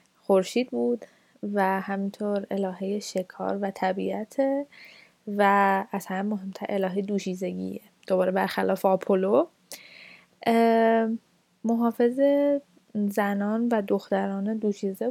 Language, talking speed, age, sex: Persian, 85 wpm, 10-29, female